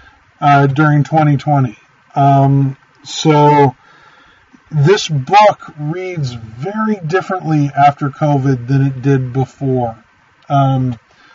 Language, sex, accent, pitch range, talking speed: English, male, American, 140-195 Hz, 90 wpm